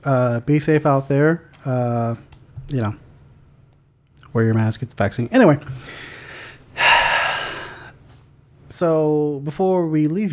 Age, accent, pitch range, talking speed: 30-49, American, 125-150 Hz, 110 wpm